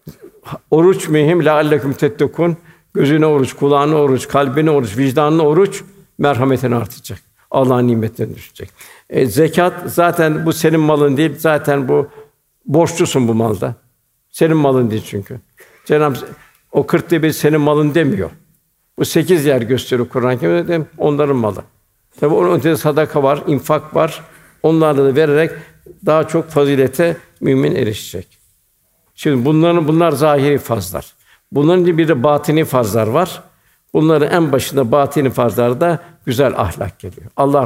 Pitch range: 130-160 Hz